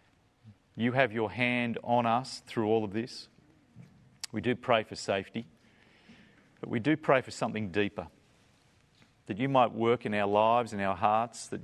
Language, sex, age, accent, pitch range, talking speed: English, male, 40-59, Australian, 95-115 Hz, 170 wpm